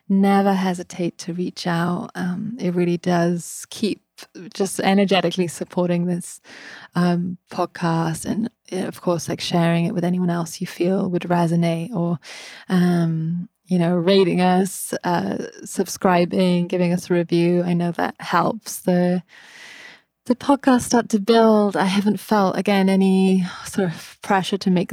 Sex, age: female, 20-39